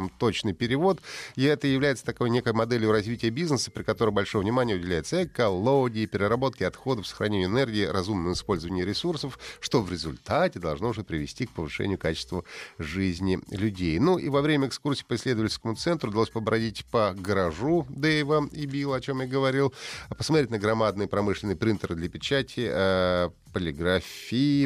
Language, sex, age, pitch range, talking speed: Russian, male, 30-49, 95-135 Hz, 150 wpm